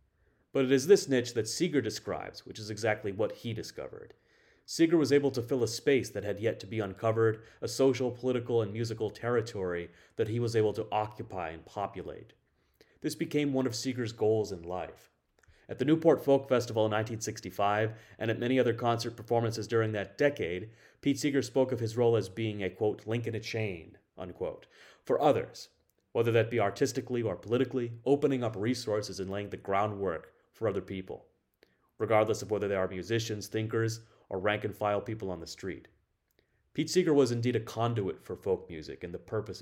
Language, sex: English, male